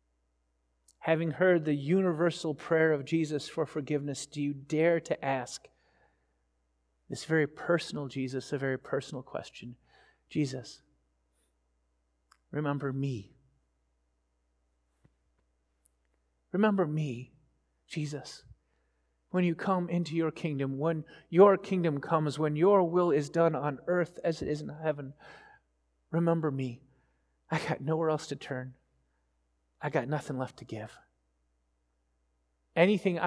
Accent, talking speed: American, 115 wpm